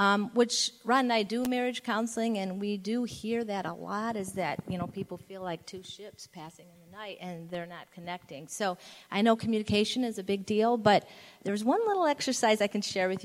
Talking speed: 220 wpm